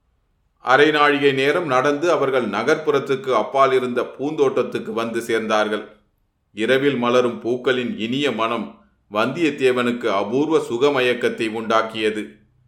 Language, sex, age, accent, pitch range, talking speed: Tamil, male, 30-49, native, 110-135 Hz, 90 wpm